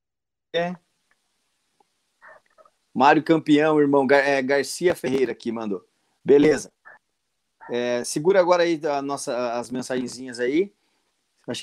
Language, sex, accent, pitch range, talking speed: Portuguese, male, Brazilian, 125-160 Hz, 100 wpm